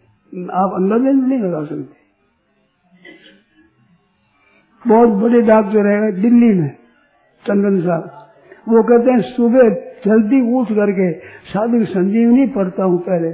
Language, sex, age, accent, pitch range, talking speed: Hindi, male, 60-79, native, 180-235 Hz, 125 wpm